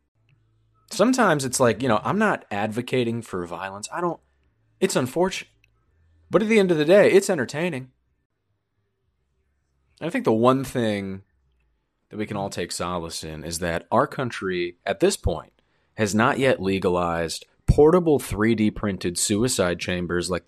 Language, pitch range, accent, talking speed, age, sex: English, 90-130 Hz, American, 150 wpm, 30-49, male